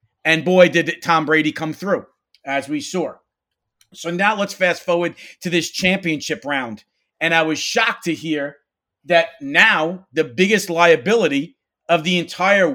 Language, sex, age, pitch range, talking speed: English, male, 40-59, 160-195 Hz, 155 wpm